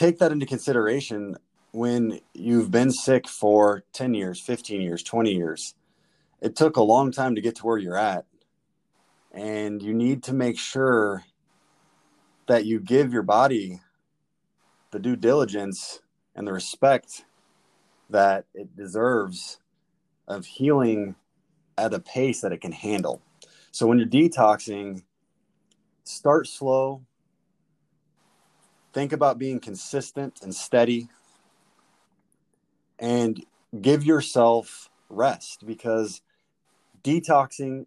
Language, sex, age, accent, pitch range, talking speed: English, male, 20-39, American, 105-130 Hz, 115 wpm